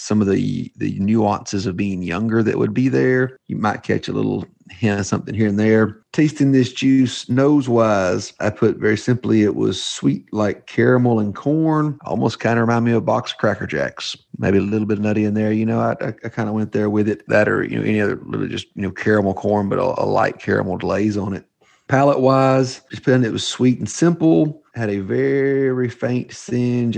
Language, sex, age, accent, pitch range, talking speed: English, male, 40-59, American, 105-130 Hz, 220 wpm